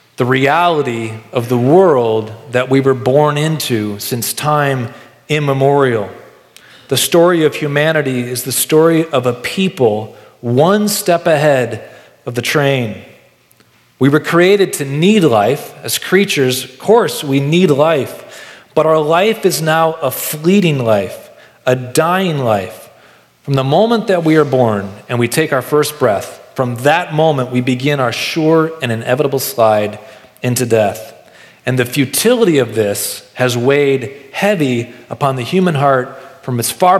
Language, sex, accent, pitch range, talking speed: English, male, American, 125-155 Hz, 150 wpm